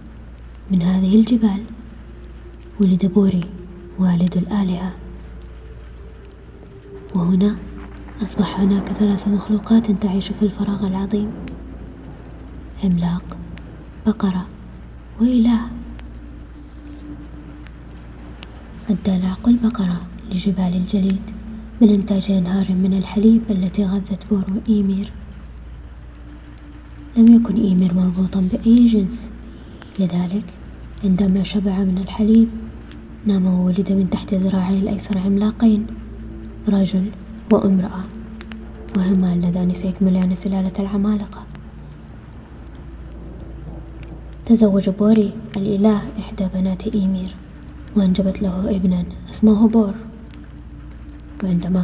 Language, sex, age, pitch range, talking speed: Arabic, female, 20-39, 180-210 Hz, 80 wpm